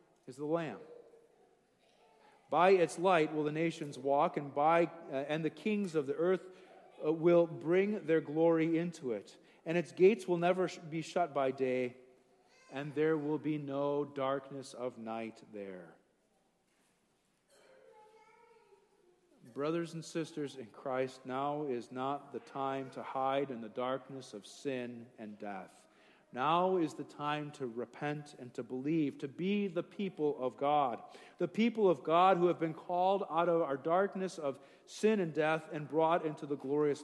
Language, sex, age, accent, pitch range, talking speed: English, male, 40-59, American, 135-170 Hz, 160 wpm